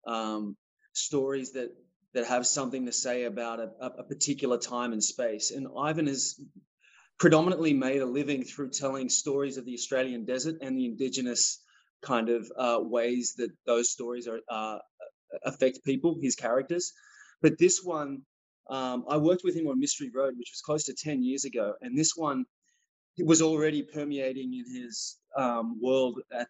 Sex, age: male, 20-39